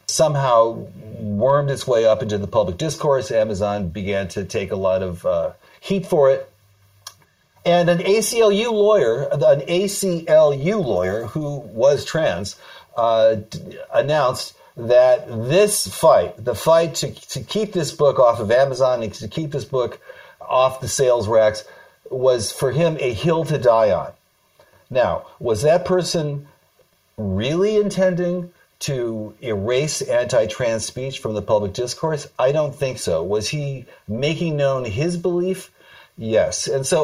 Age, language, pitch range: 50-69, English, 115-175 Hz